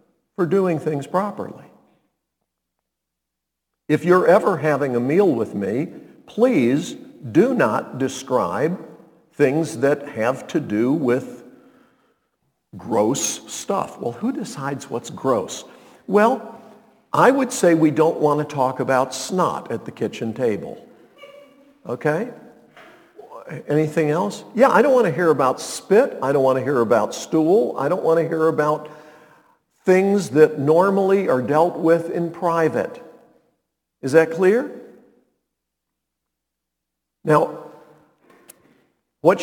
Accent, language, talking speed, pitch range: American, English, 125 wpm, 150-240 Hz